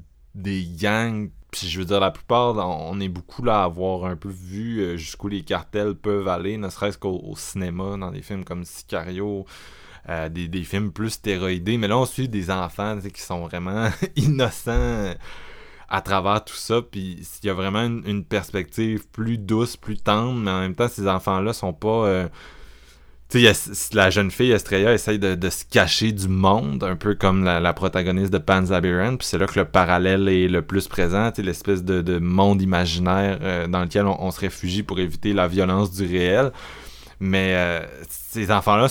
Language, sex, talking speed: French, male, 195 wpm